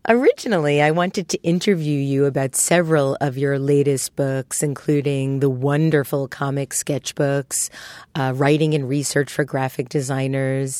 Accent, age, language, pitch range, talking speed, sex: American, 40-59, English, 140-175 Hz, 135 wpm, female